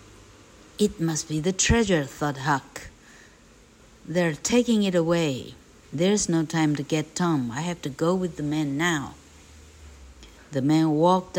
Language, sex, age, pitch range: Chinese, female, 60-79, 150-190 Hz